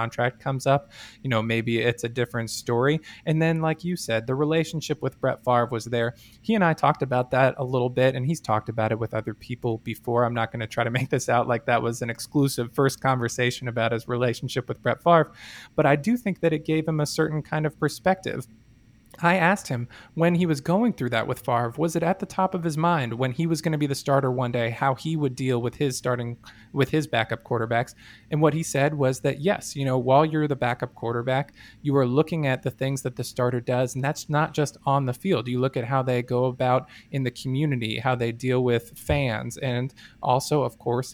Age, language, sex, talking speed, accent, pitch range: 20-39, English, male, 240 wpm, American, 120-150 Hz